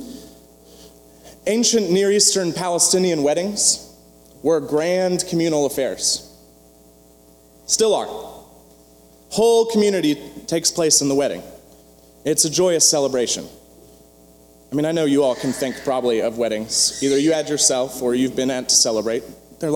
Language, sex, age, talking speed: English, male, 30-49, 135 wpm